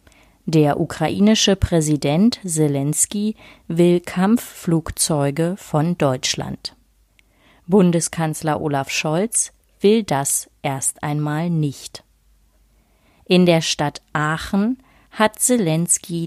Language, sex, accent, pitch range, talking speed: German, female, German, 150-200 Hz, 80 wpm